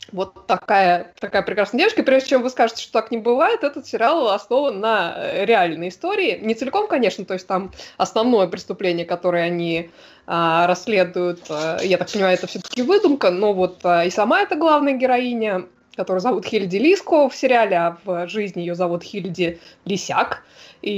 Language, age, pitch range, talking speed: Russian, 20-39, 180-255 Hz, 165 wpm